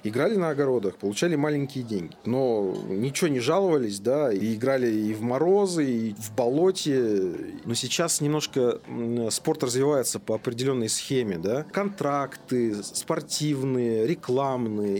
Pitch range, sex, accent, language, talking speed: 110-150 Hz, male, native, Russian, 125 wpm